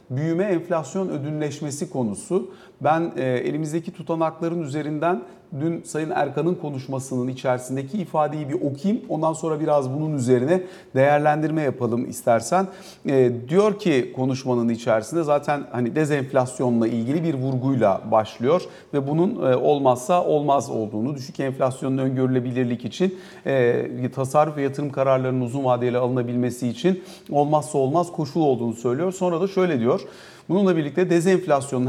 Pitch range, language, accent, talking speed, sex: 130-175 Hz, Turkish, native, 130 wpm, male